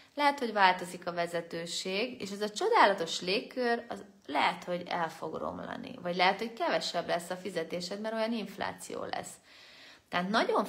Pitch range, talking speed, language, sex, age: 170-225 Hz, 165 wpm, Hungarian, female, 30-49